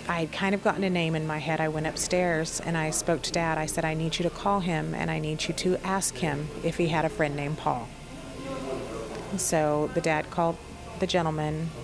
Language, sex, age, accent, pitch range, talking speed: English, female, 30-49, American, 150-170 Hz, 235 wpm